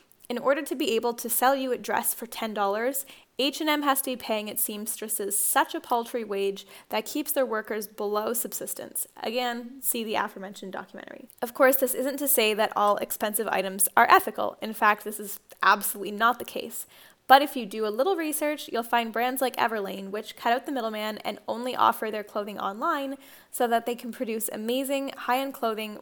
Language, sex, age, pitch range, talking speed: English, female, 10-29, 215-265 Hz, 195 wpm